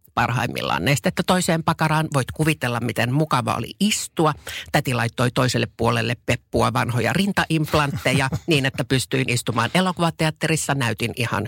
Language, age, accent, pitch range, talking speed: Finnish, 50-69, native, 115-150 Hz, 125 wpm